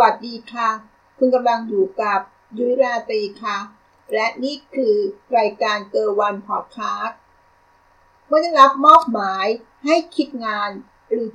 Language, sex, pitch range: Thai, female, 205-255 Hz